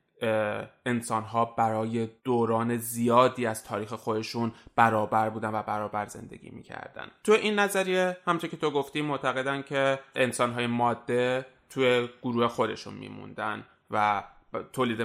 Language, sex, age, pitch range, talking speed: Persian, male, 20-39, 115-125 Hz, 125 wpm